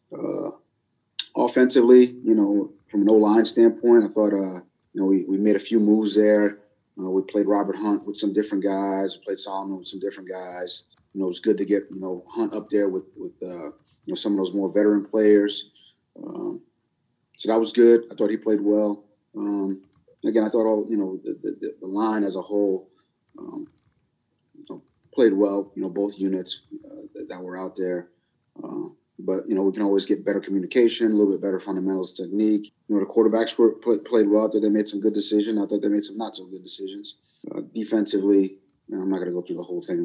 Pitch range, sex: 95-110 Hz, male